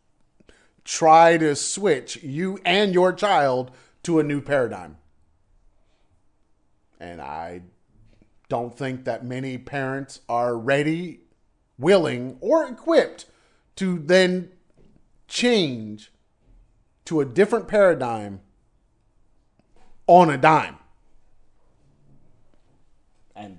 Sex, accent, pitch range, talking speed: male, American, 125-190 Hz, 85 wpm